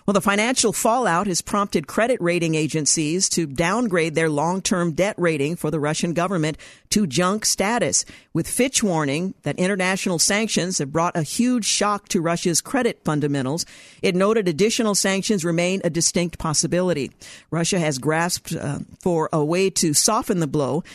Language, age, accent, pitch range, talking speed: English, 50-69, American, 160-200 Hz, 160 wpm